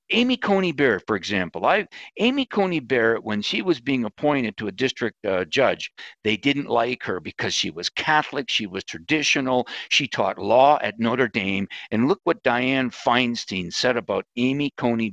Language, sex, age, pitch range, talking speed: English, male, 50-69, 110-145 Hz, 180 wpm